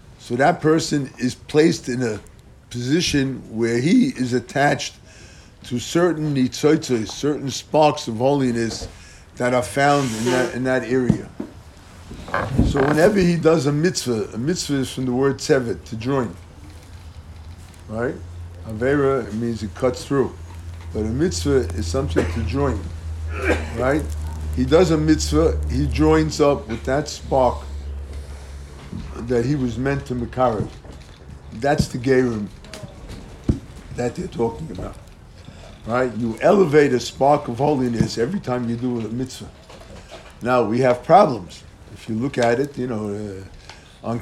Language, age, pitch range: English, 50-69, 90-135 Hz